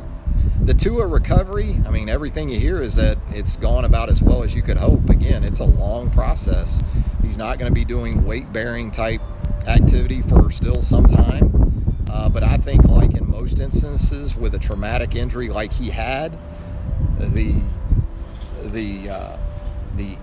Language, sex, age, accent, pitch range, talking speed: English, male, 40-59, American, 85-115 Hz, 165 wpm